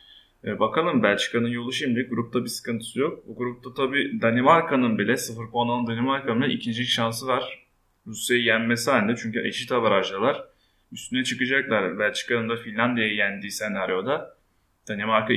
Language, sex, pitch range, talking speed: Turkish, male, 110-135 Hz, 135 wpm